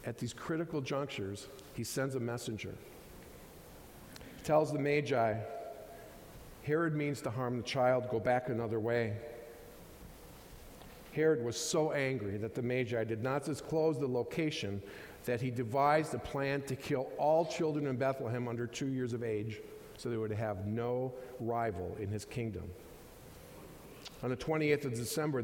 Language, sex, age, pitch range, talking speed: English, male, 50-69, 115-150 Hz, 150 wpm